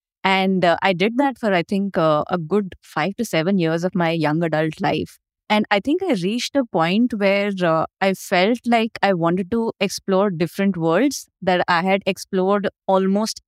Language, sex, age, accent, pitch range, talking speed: English, female, 20-39, Indian, 175-210 Hz, 190 wpm